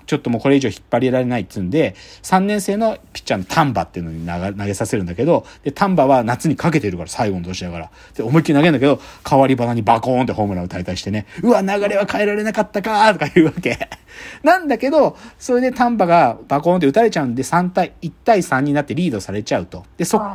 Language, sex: Japanese, male